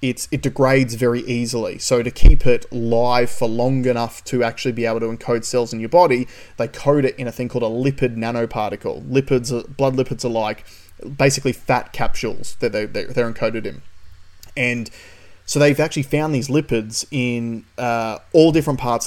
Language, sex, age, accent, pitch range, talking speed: English, male, 20-39, Australian, 110-135 Hz, 185 wpm